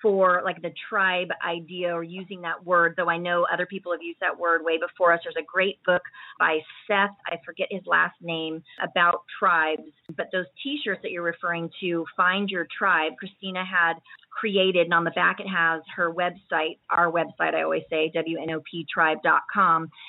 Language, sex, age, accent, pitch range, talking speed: English, female, 30-49, American, 175-225 Hz, 180 wpm